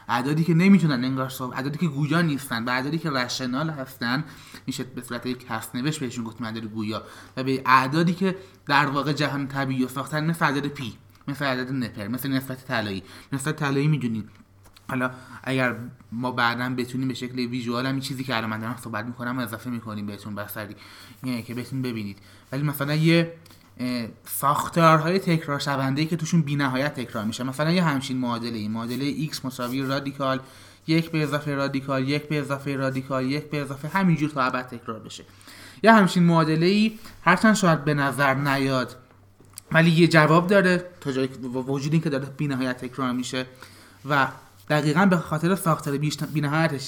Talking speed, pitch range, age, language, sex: 170 wpm, 120-155 Hz, 30-49, Persian, male